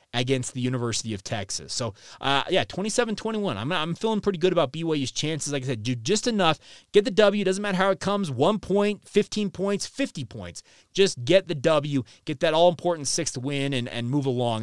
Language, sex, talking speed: English, male, 210 wpm